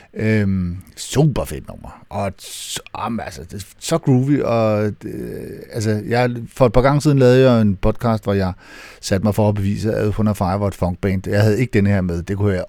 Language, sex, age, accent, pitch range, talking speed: Danish, male, 60-79, native, 105-135 Hz, 215 wpm